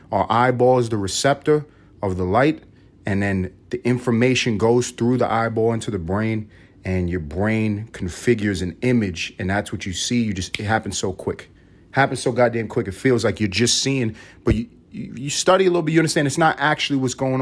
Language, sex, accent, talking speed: English, male, American, 205 wpm